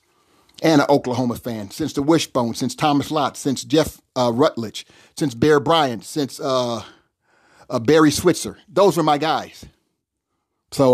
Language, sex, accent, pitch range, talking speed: English, male, American, 125-165 Hz, 150 wpm